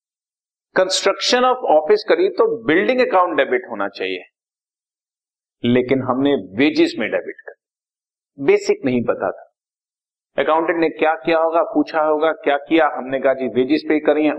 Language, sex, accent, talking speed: Hindi, male, native, 150 wpm